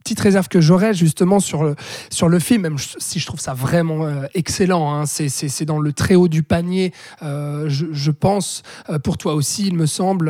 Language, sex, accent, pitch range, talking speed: French, male, French, 155-185 Hz, 225 wpm